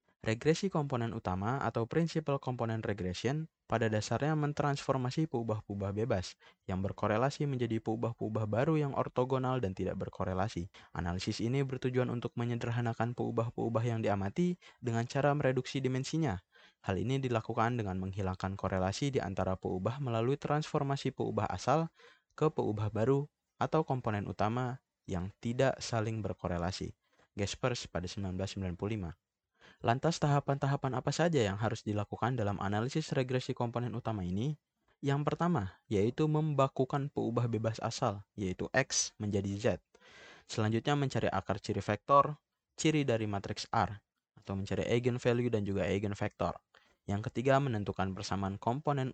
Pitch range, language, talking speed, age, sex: 100-135 Hz, Indonesian, 130 wpm, 20-39, male